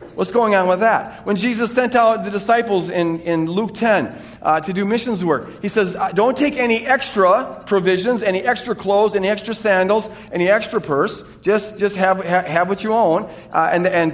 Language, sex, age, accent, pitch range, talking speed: English, male, 40-59, American, 185-240 Hz, 200 wpm